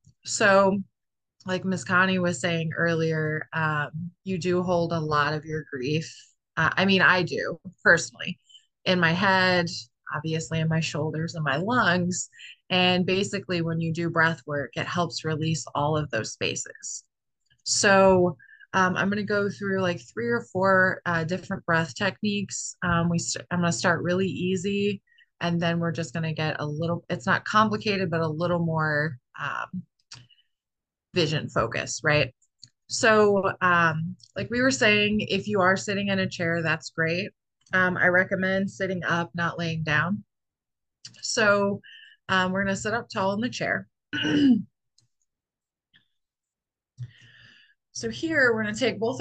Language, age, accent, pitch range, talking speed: English, 20-39, American, 160-200 Hz, 160 wpm